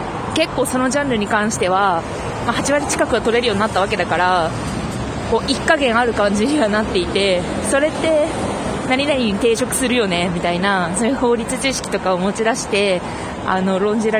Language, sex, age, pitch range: Japanese, female, 20-39, 195-245 Hz